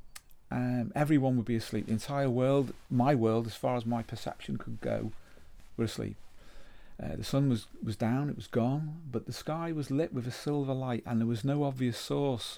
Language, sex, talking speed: English, male, 205 wpm